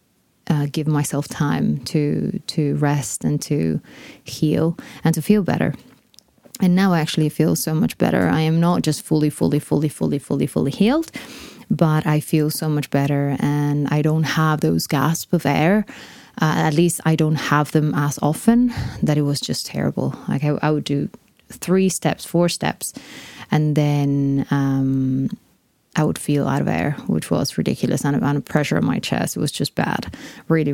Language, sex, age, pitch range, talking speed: English, female, 20-39, 145-175 Hz, 180 wpm